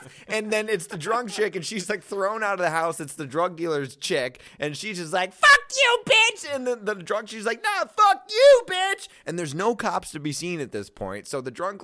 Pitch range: 115-185 Hz